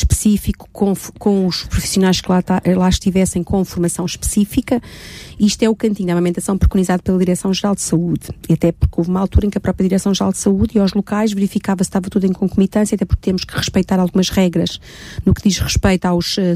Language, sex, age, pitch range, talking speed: Portuguese, female, 40-59, 190-235 Hz, 220 wpm